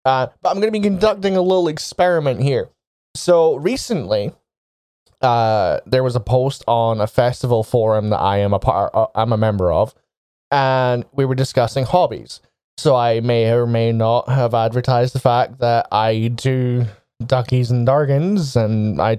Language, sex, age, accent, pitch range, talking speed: English, male, 20-39, American, 115-140 Hz, 170 wpm